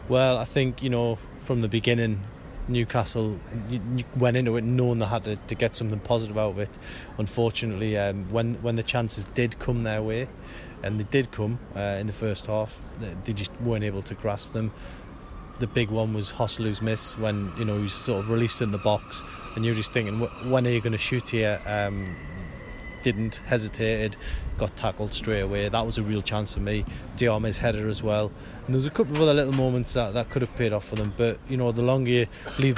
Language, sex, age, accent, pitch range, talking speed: English, male, 20-39, British, 105-120 Hz, 220 wpm